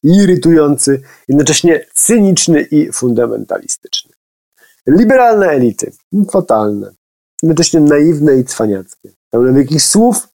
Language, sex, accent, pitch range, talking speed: Polish, male, native, 105-155 Hz, 85 wpm